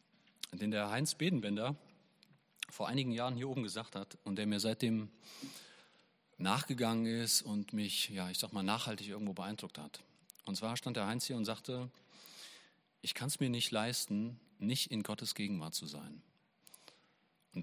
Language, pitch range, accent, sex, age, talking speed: German, 105-130 Hz, German, male, 40-59, 165 wpm